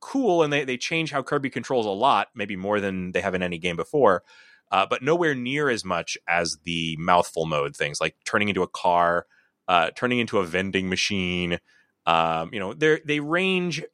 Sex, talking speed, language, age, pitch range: male, 200 wpm, English, 30-49, 85-125 Hz